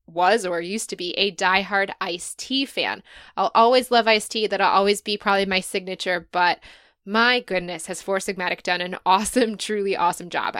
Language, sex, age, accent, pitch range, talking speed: English, female, 20-39, American, 190-230 Hz, 185 wpm